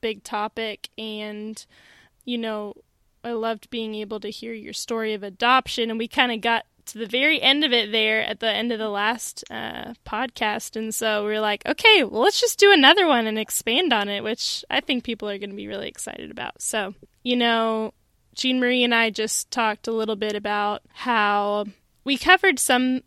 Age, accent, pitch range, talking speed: 10-29, American, 215-250 Hz, 205 wpm